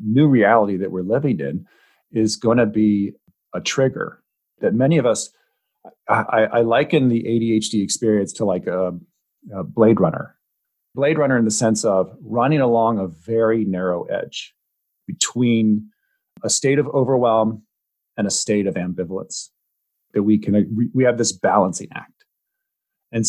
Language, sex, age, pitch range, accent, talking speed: English, male, 40-59, 105-130 Hz, American, 150 wpm